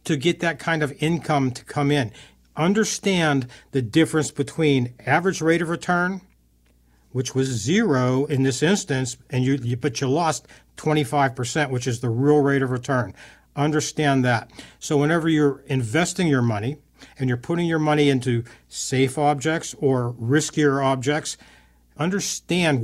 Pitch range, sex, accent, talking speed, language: 135-165 Hz, male, American, 145 wpm, English